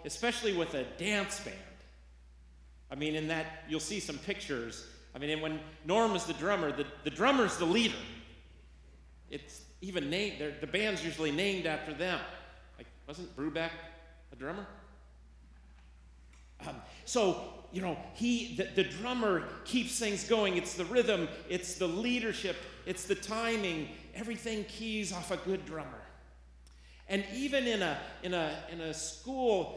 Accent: American